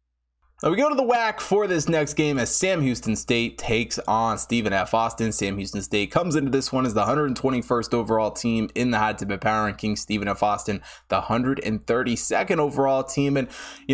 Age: 20-39